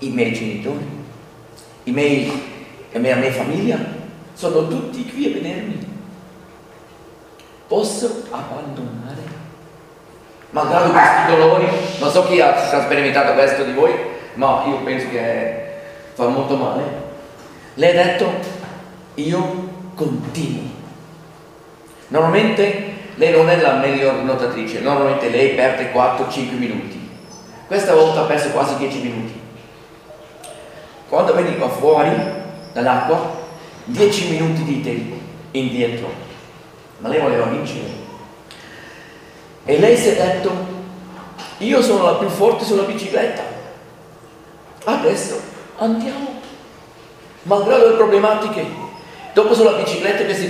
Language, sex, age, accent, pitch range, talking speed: Italian, male, 50-69, native, 135-190 Hz, 110 wpm